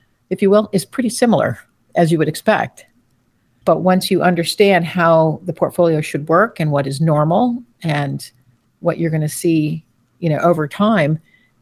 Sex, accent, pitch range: female, American, 140-180 Hz